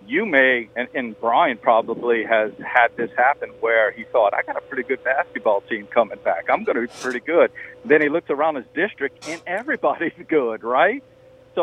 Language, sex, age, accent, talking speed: English, male, 50-69, American, 200 wpm